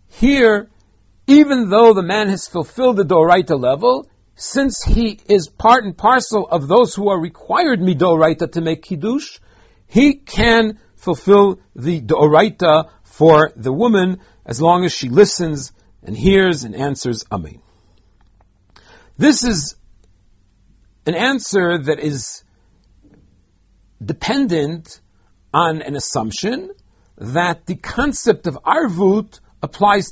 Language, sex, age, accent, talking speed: English, male, 50-69, American, 120 wpm